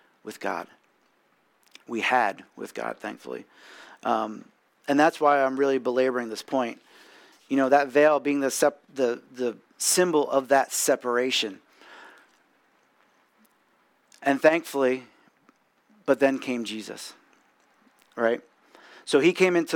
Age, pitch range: 40-59, 125-150 Hz